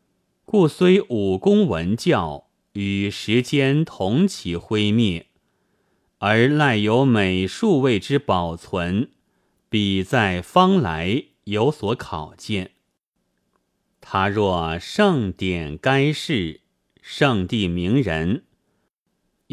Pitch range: 95-140 Hz